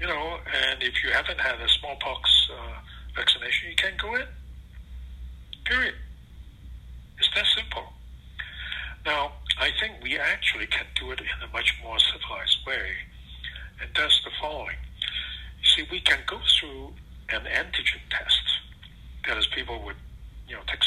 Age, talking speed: 60-79, 150 wpm